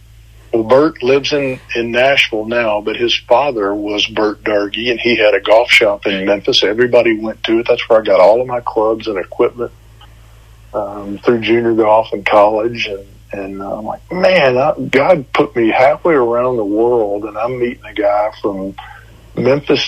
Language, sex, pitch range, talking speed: English, male, 110-120 Hz, 185 wpm